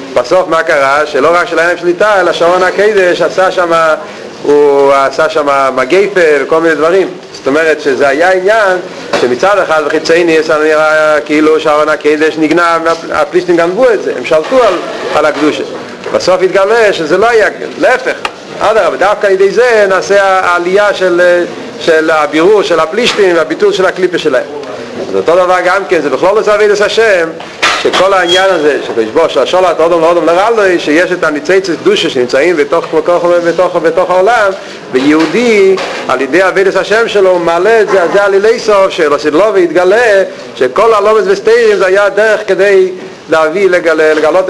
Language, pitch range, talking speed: Hebrew, 160-200 Hz, 160 wpm